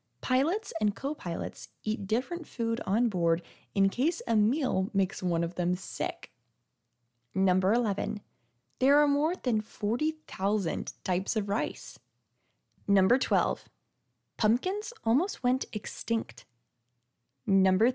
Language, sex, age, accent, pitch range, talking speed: English, female, 10-29, American, 175-255 Hz, 115 wpm